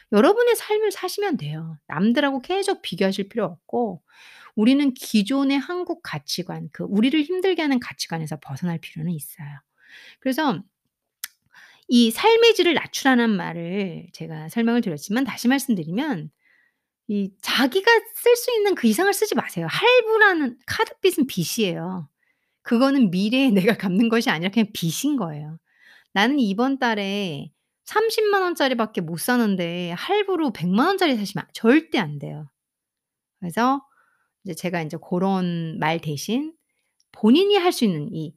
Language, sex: Korean, female